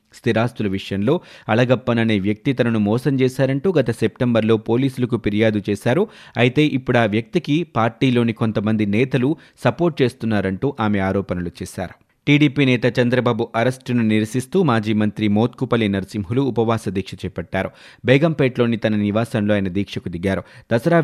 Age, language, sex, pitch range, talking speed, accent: 30-49, Telugu, male, 105-125 Hz, 125 wpm, native